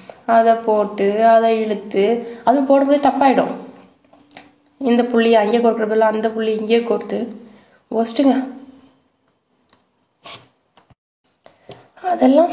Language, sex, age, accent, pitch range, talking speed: Tamil, female, 20-39, native, 210-245 Hz, 80 wpm